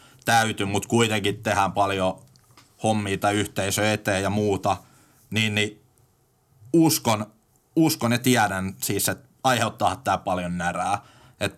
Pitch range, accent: 100-120 Hz, native